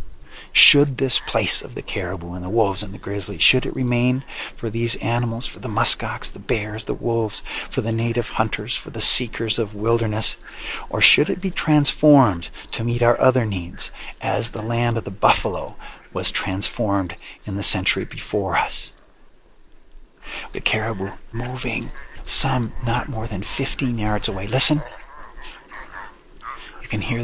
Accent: American